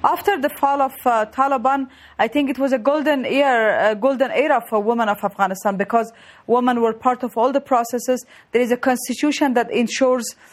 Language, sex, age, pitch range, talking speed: English, female, 30-49, 240-285 Hz, 190 wpm